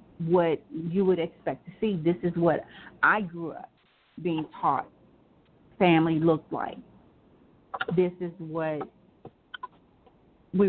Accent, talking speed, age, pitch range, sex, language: American, 120 wpm, 40-59, 165-190 Hz, female, English